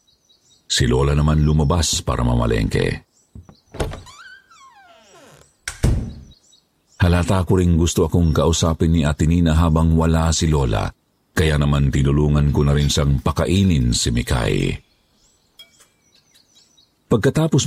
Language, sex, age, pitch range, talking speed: Filipino, male, 50-69, 75-95 Hz, 95 wpm